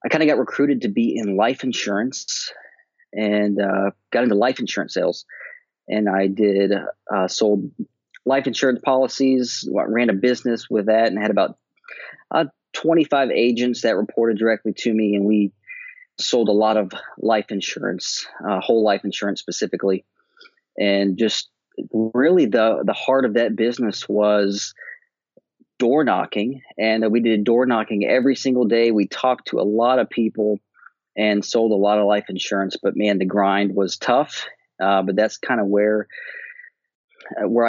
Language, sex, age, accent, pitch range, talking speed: English, male, 40-59, American, 105-130 Hz, 160 wpm